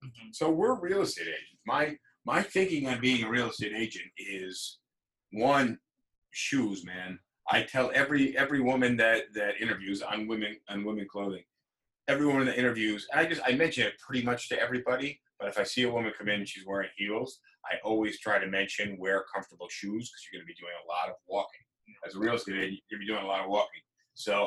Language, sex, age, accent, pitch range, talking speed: English, male, 30-49, American, 100-120 Hz, 225 wpm